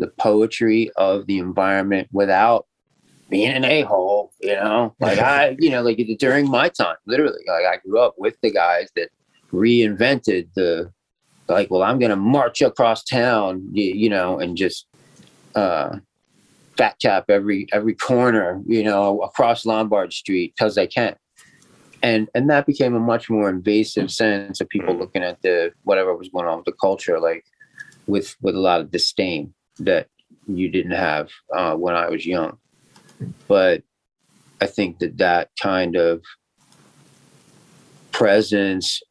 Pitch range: 90-115 Hz